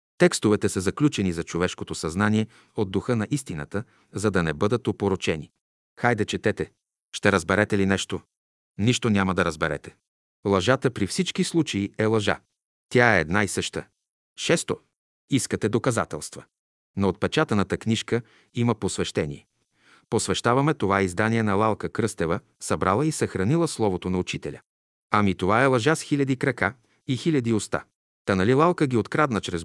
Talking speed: 145 wpm